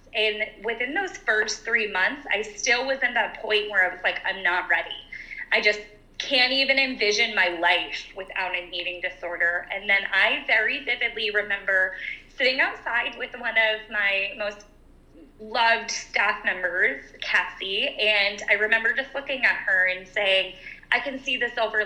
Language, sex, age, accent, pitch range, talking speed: English, female, 20-39, American, 200-250 Hz, 165 wpm